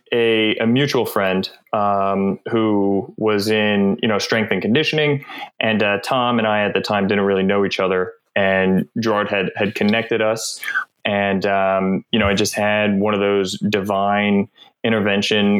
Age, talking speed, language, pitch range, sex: 20-39, 170 wpm, English, 95-110 Hz, male